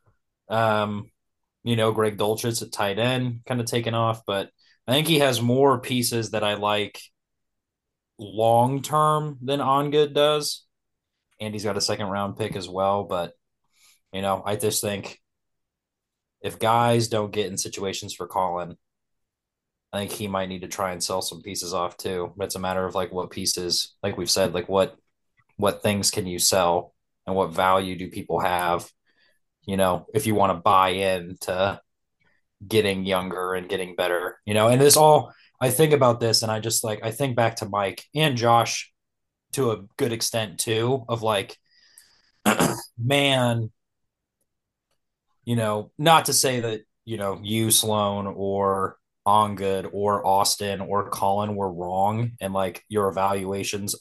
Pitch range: 95-115 Hz